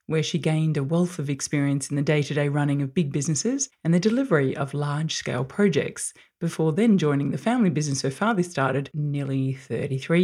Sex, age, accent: female, 30-49, Australian